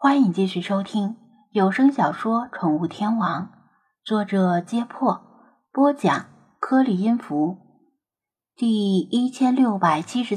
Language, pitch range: Chinese, 185-260 Hz